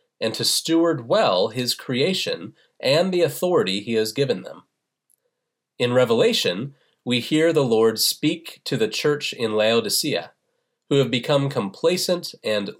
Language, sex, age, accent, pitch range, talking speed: English, male, 30-49, American, 120-180 Hz, 140 wpm